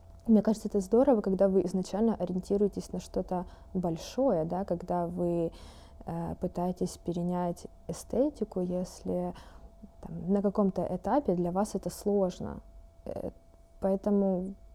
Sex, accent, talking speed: female, native, 115 wpm